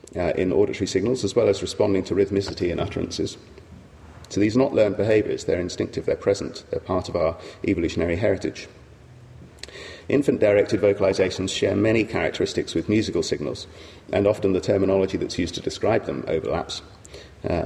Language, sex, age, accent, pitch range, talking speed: English, male, 40-59, British, 90-110 Hz, 165 wpm